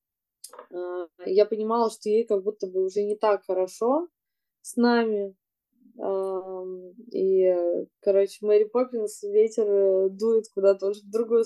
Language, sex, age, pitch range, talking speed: Russian, female, 20-39, 195-235 Hz, 125 wpm